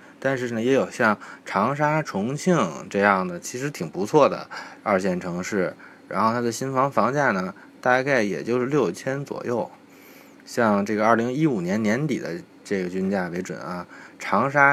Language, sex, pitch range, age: Chinese, male, 100-150 Hz, 20-39